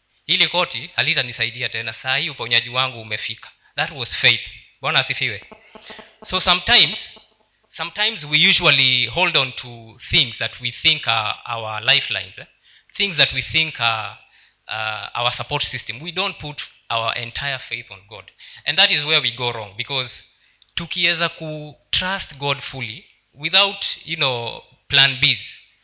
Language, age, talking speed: Swahili, 20-39, 150 wpm